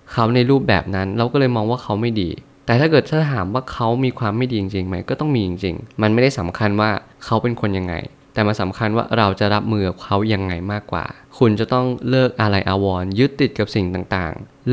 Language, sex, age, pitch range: Thai, male, 20-39, 100-125 Hz